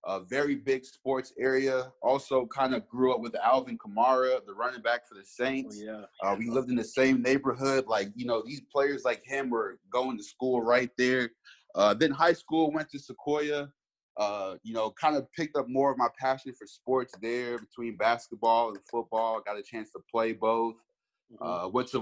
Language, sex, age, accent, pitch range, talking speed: English, male, 20-39, American, 110-130 Hz, 200 wpm